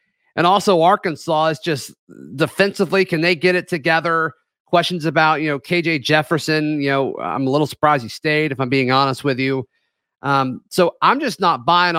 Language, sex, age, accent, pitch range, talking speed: English, male, 40-59, American, 150-195 Hz, 185 wpm